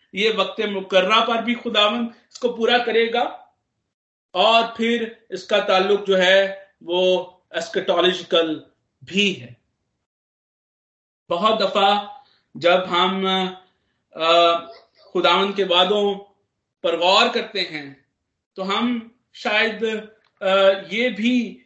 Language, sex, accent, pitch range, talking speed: Hindi, male, native, 170-205 Hz, 105 wpm